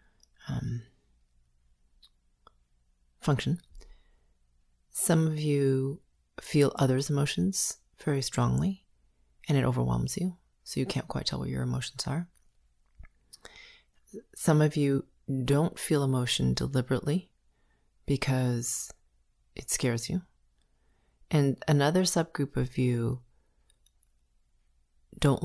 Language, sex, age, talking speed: English, female, 30-49, 95 wpm